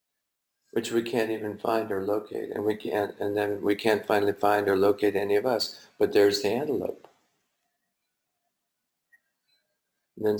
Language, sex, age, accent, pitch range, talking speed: German, male, 60-79, American, 105-125 Hz, 150 wpm